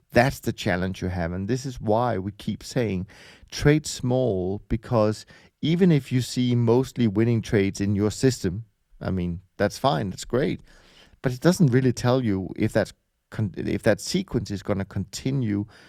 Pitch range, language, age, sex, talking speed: 95-125 Hz, English, 40-59, male, 175 wpm